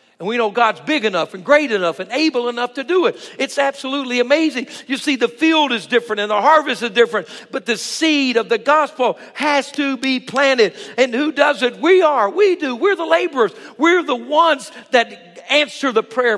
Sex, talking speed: male, 210 wpm